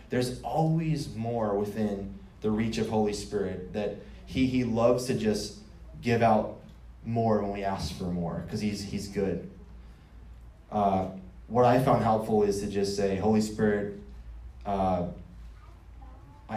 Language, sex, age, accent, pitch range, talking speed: English, male, 20-39, American, 95-115 Hz, 140 wpm